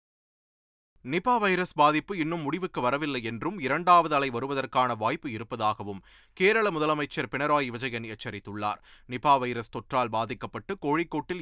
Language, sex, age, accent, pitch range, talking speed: Tamil, male, 30-49, native, 120-170 Hz, 115 wpm